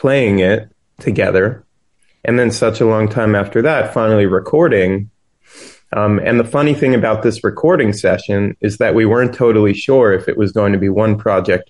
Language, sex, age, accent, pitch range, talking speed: English, male, 30-49, American, 100-115 Hz, 185 wpm